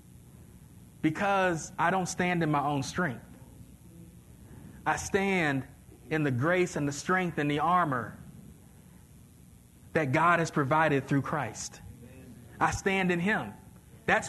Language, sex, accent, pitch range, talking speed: English, male, American, 140-195 Hz, 125 wpm